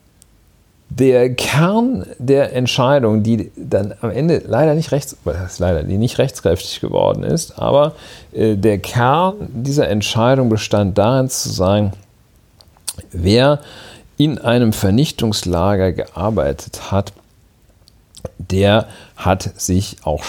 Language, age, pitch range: German, 40-59, 95-120 Hz